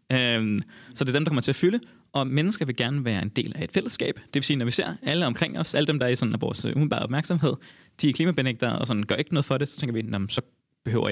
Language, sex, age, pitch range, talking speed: Danish, male, 30-49, 120-145 Hz, 295 wpm